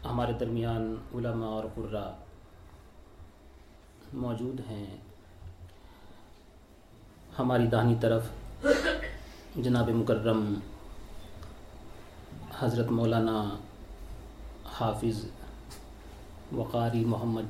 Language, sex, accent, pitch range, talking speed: English, male, Indian, 105-120 Hz, 60 wpm